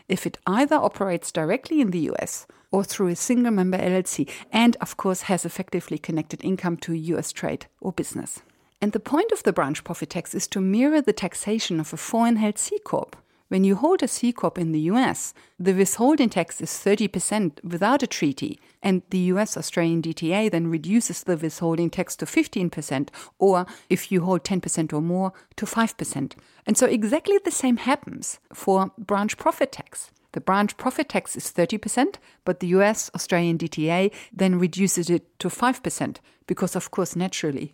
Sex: female